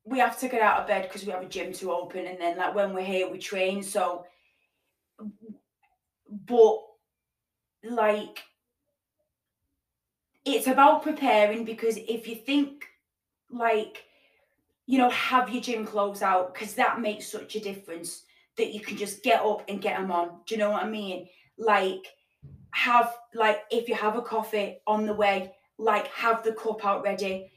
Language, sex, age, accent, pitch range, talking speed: English, female, 20-39, British, 200-235 Hz, 170 wpm